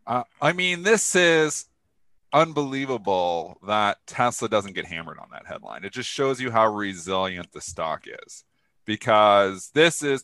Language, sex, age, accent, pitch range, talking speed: English, male, 40-59, American, 100-140 Hz, 150 wpm